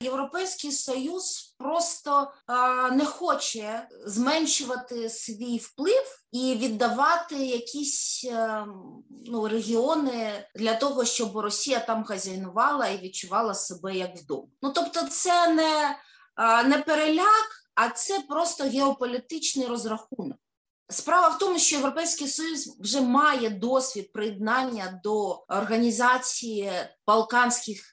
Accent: native